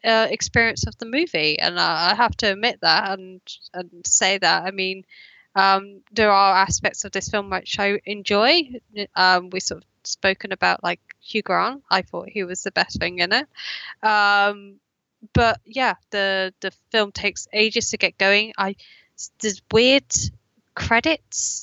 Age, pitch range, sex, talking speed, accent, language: 10-29, 190-235 Hz, female, 170 wpm, British, English